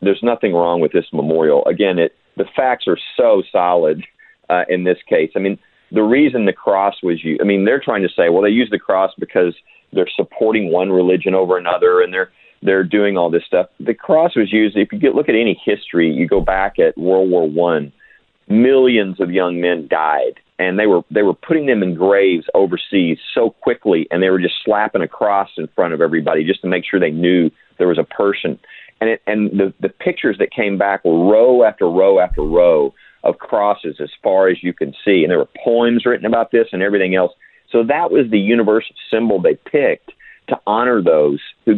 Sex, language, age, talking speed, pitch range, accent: male, English, 40-59, 215 wpm, 90-120 Hz, American